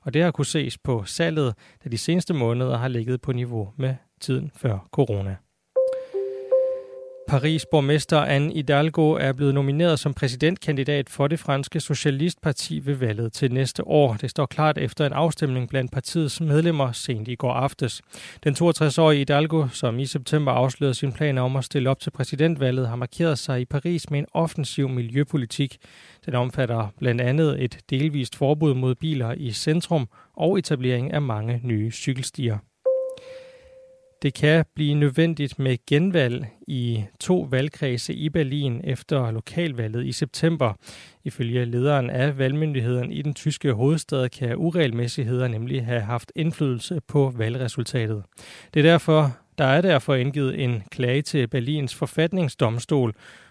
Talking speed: 150 wpm